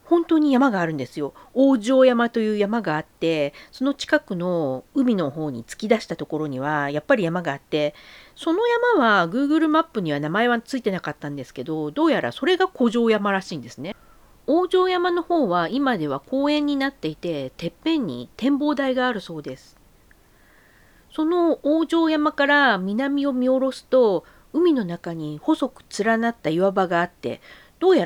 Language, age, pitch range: Japanese, 50-69, 165-280 Hz